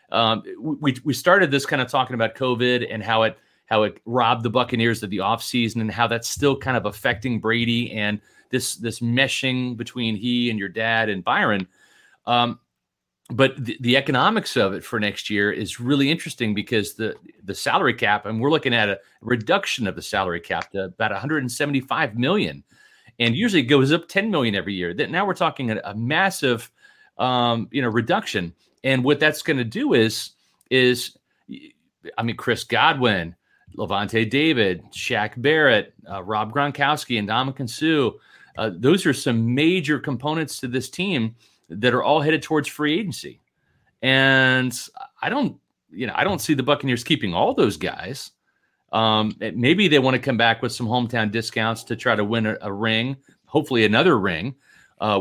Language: English